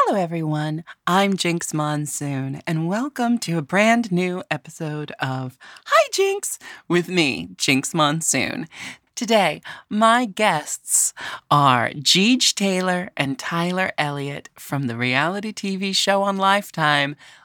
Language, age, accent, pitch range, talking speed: English, 30-49, American, 130-175 Hz, 120 wpm